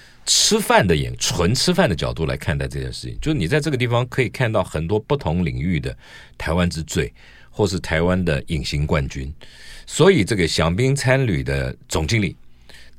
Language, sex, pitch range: Chinese, male, 65-105 Hz